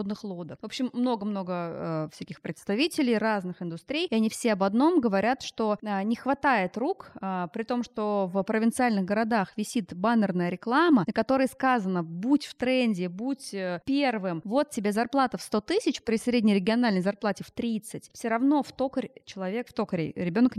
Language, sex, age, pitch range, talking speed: Russian, female, 20-39, 195-255 Hz, 165 wpm